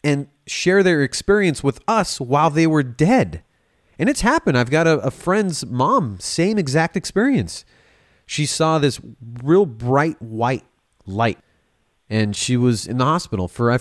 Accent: American